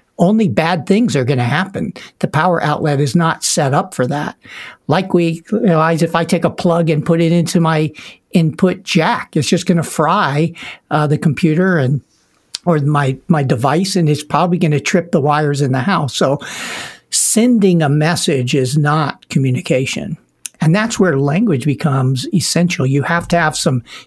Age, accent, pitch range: 60-79, American, 145-180 Hz